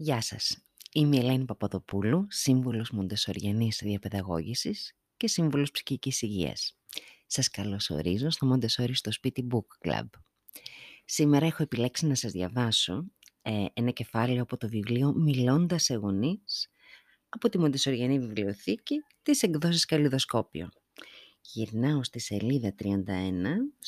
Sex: female